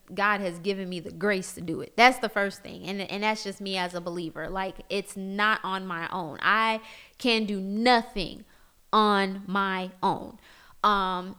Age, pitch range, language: 20-39, 195-230 Hz, English